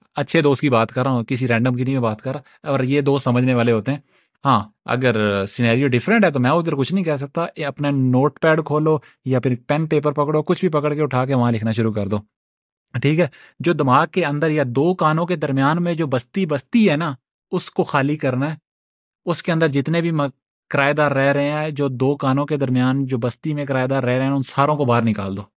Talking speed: 230 wpm